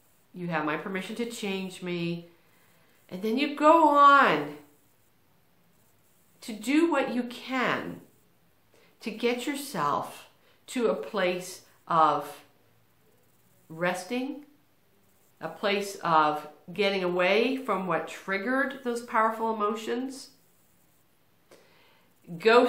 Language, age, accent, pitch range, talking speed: English, 50-69, American, 180-255 Hz, 100 wpm